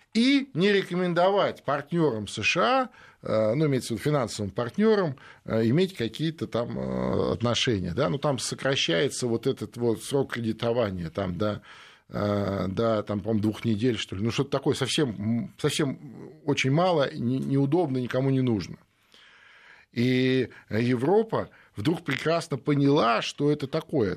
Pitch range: 115-145 Hz